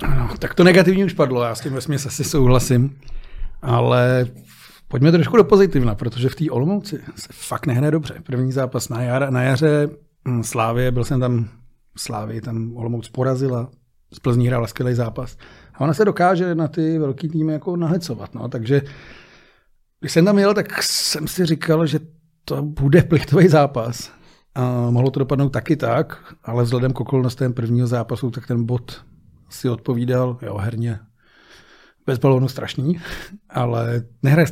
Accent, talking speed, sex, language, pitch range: native, 160 wpm, male, Czech, 120-145 Hz